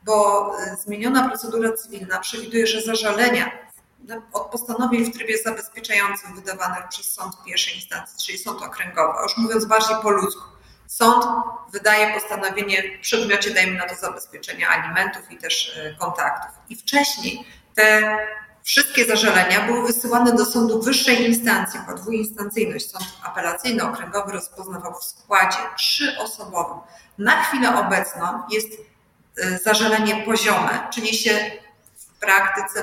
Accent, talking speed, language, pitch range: native, 125 wpm, Polish, 190-230 Hz